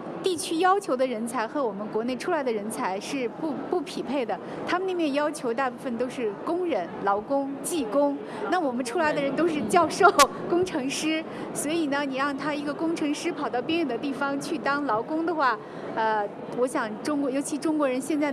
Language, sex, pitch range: Chinese, female, 245-320 Hz